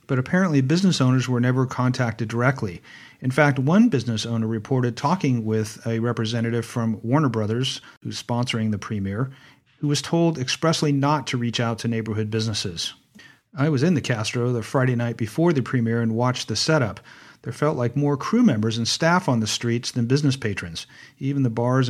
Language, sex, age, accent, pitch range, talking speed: English, male, 40-59, American, 115-145 Hz, 185 wpm